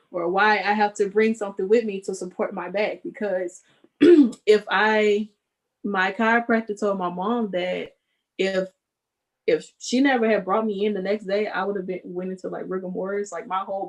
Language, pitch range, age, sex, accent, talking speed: English, 185-225 Hz, 20-39, female, American, 190 wpm